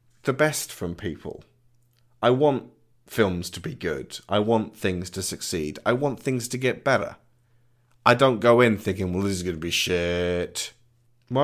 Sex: male